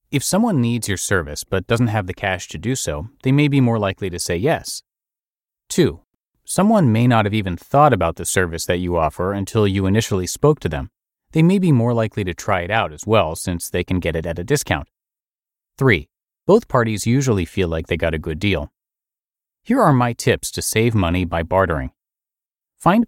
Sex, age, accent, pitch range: male, 30-49, American, 90-125 Hz